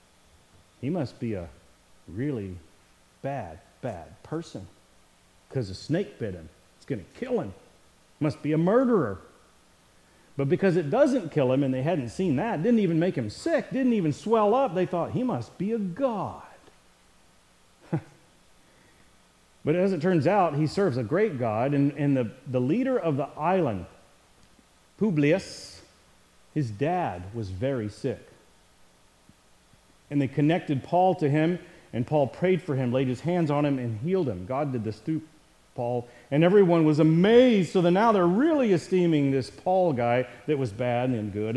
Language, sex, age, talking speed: English, male, 40-59, 170 wpm